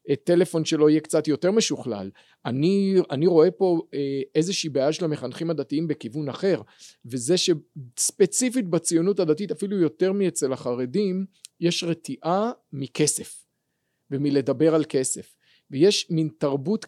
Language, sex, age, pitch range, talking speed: Hebrew, male, 40-59, 145-180 Hz, 120 wpm